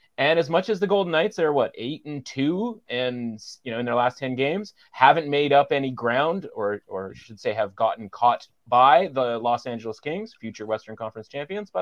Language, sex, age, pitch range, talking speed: English, male, 30-49, 110-145 Hz, 215 wpm